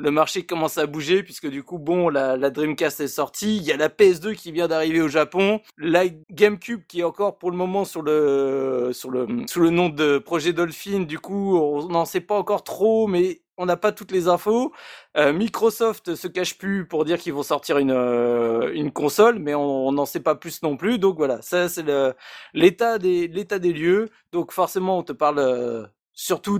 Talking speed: 215 wpm